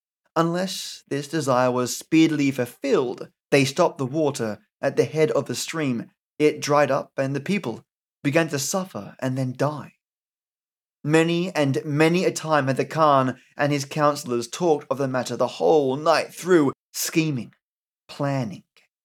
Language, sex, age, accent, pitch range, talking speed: English, male, 20-39, British, 135-165 Hz, 155 wpm